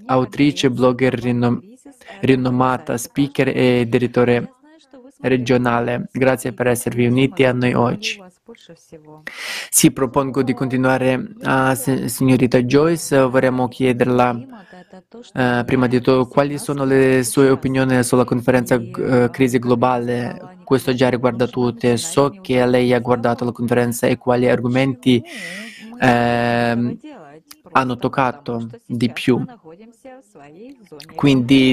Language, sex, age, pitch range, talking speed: Italian, male, 20-39, 125-135 Hz, 110 wpm